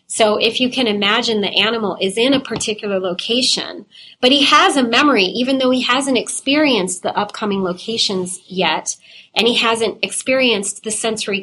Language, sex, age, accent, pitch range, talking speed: English, female, 30-49, American, 185-225 Hz, 170 wpm